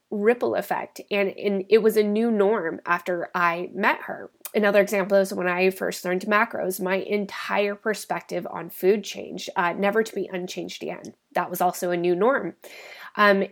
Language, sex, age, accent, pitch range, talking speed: English, female, 20-39, American, 190-225 Hz, 180 wpm